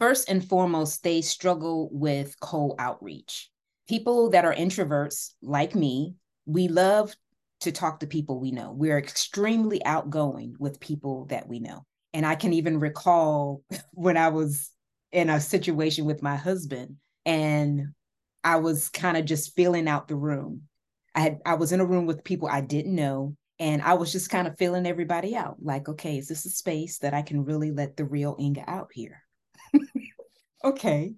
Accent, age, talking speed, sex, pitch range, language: American, 20-39, 175 wpm, female, 145-185 Hz, English